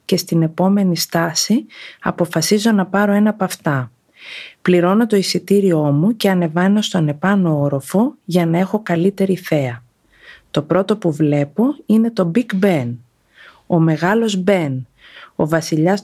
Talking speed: 140 wpm